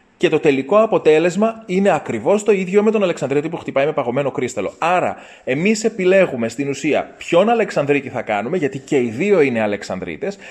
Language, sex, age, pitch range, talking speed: Greek, male, 30-49, 140-195 Hz, 175 wpm